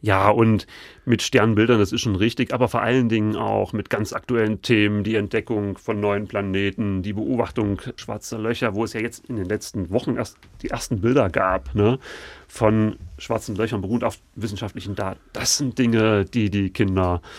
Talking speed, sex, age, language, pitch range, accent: 185 wpm, male, 30-49, German, 105-120 Hz, German